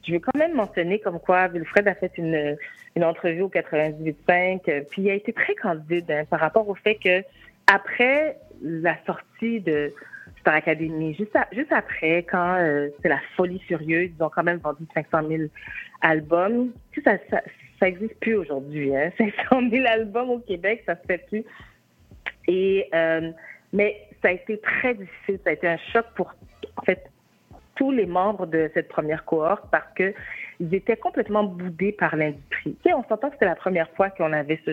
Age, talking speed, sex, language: 40-59, 190 wpm, female, French